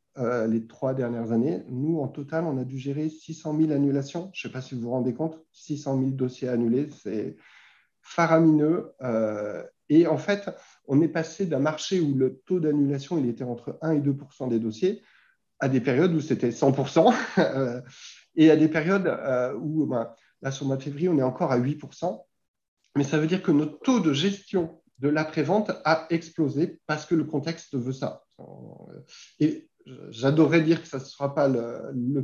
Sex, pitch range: male, 135-170 Hz